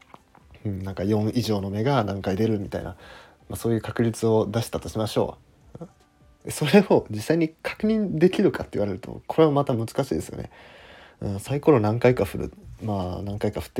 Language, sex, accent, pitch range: Japanese, male, native, 100-150 Hz